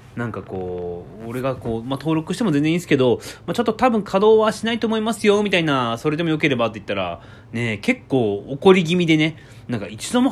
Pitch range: 110-160 Hz